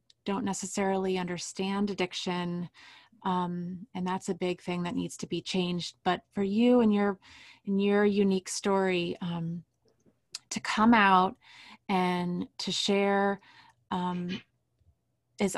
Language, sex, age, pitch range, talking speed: English, female, 30-49, 180-200 Hz, 125 wpm